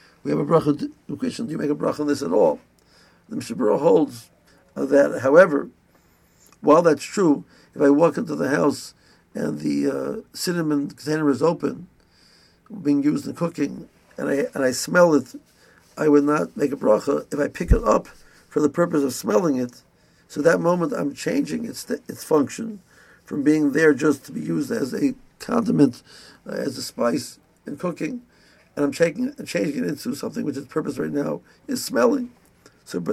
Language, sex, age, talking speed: English, male, 60-79, 180 wpm